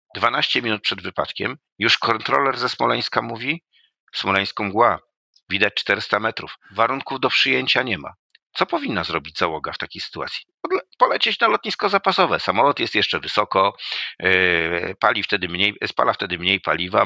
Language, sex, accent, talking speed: Polish, male, native, 145 wpm